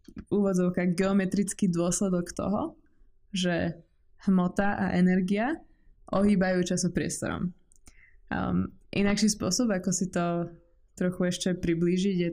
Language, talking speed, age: Czech, 95 wpm, 20-39